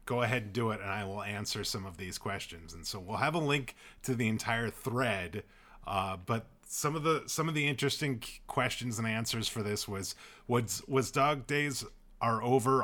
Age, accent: 30-49, American